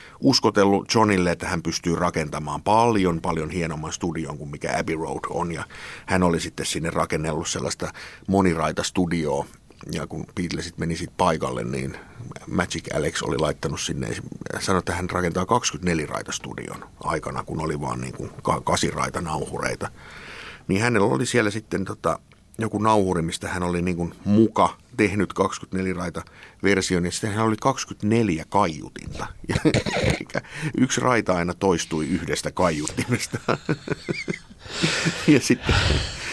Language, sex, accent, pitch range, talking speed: Finnish, male, native, 80-100 Hz, 130 wpm